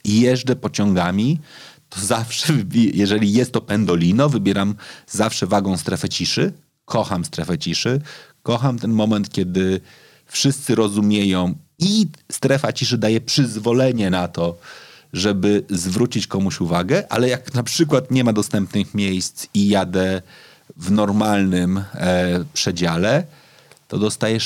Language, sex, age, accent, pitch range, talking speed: Polish, male, 30-49, native, 105-135 Hz, 120 wpm